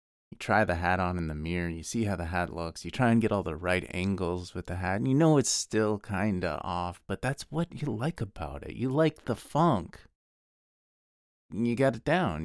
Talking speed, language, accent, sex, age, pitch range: 230 wpm, English, American, male, 30-49, 80-110 Hz